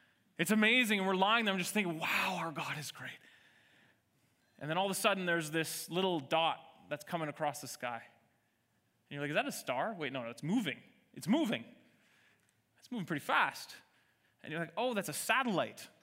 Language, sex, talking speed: English, male, 205 wpm